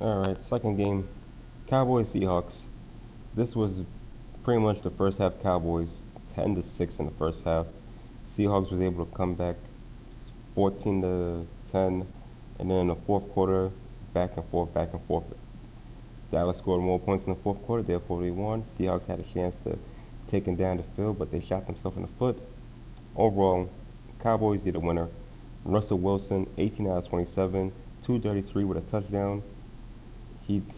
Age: 30-49